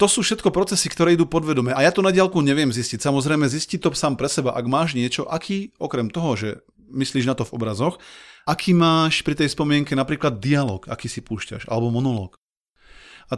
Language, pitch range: Slovak, 125-165 Hz